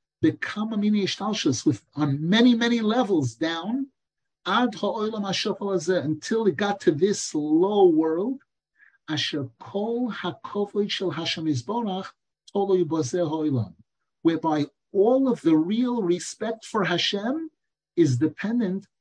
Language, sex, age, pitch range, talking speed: English, male, 50-69, 155-225 Hz, 80 wpm